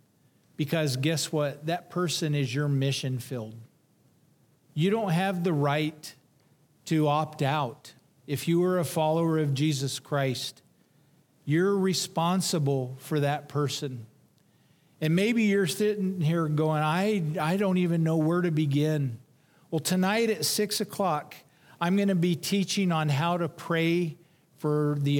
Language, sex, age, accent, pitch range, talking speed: English, male, 50-69, American, 145-175 Hz, 145 wpm